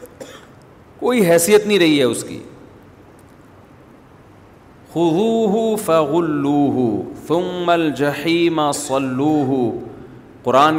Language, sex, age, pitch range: Urdu, male, 40-59, 140-180 Hz